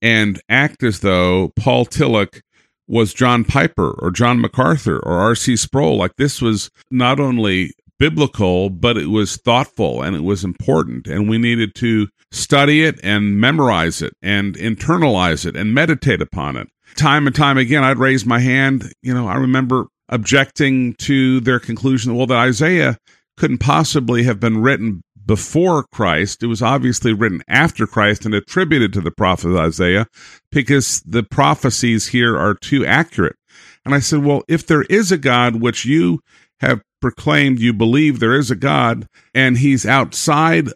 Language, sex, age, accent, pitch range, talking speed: English, male, 50-69, American, 110-140 Hz, 165 wpm